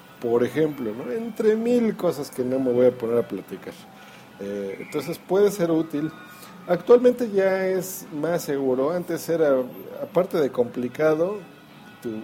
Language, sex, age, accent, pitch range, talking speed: Spanish, male, 50-69, Mexican, 120-155 Hz, 140 wpm